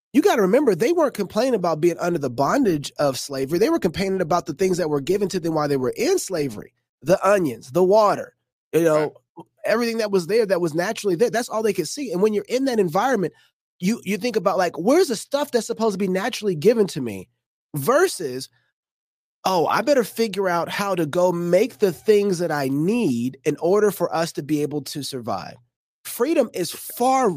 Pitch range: 165-235 Hz